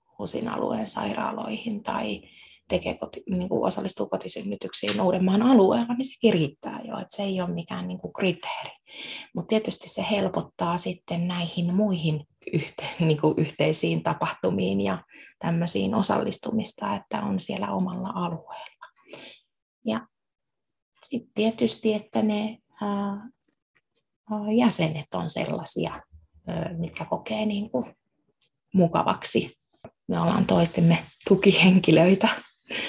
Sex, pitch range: female, 170-220 Hz